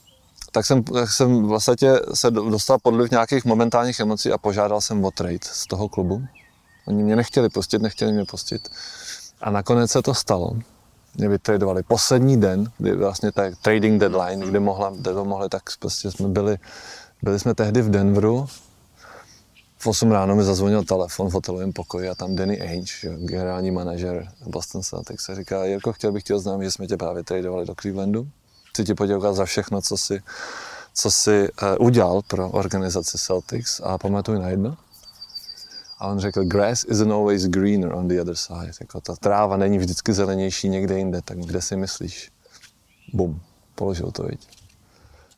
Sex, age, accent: male, 20-39, native